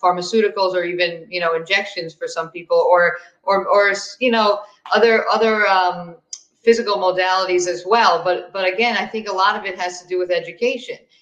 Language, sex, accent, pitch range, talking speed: English, female, American, 180-225 Hz, 185 wpm